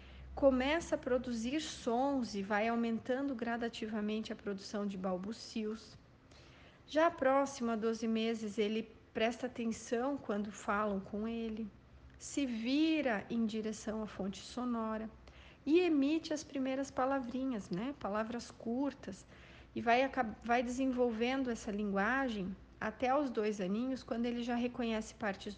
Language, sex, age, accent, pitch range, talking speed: Portuguese, female, 40-59, Brazilian, 210-260 Hz, 125 wpm